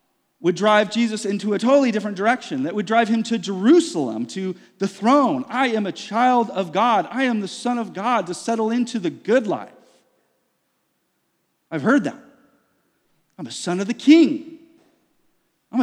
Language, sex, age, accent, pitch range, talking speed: English, male, 40-59, American, 175-230 Hz, 170 wpm